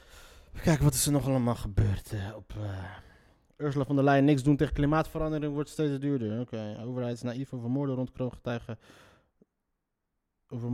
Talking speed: 170 wpm